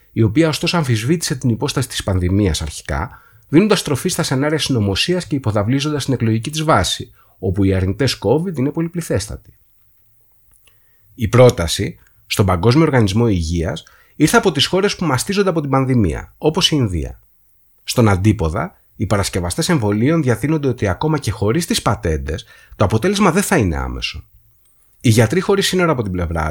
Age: 30-49